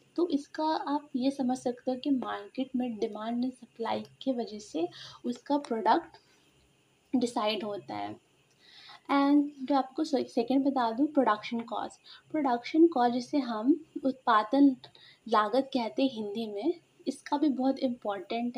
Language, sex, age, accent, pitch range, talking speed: Hindi, female, 20-39, native, 230-275 Hz, 140 wpm